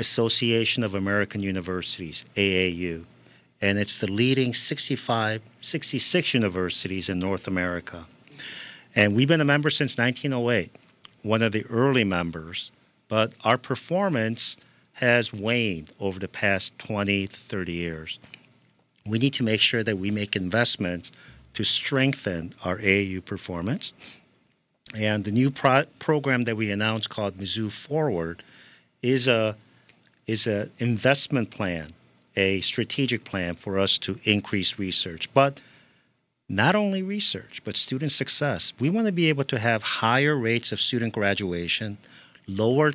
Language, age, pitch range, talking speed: English, 50-69, 95-125 Hz, 135 wpm